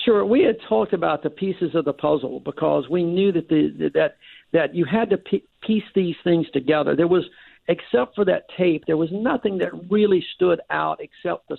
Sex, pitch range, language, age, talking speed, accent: male, 150-185 Hz, English, 60-79, 200 wpm, American